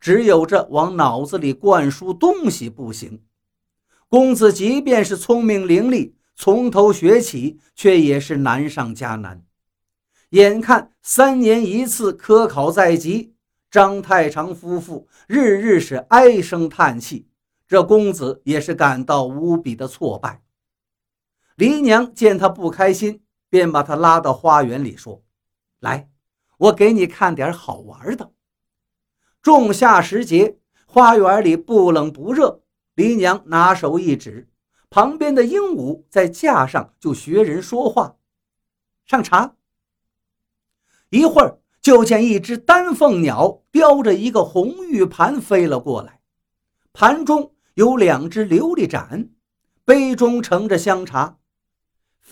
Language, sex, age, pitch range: Chinese, male, 50-69, 145-240 Hz